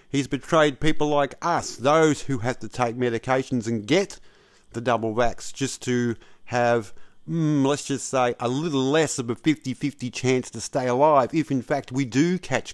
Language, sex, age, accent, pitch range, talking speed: English, male, 50-69, Australian, 125-160 Hz, 185 wpm